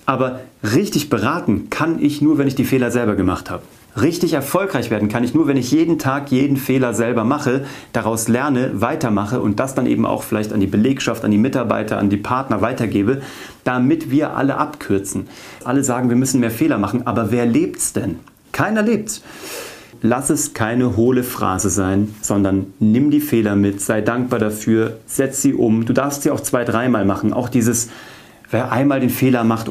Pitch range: 105-130 Hz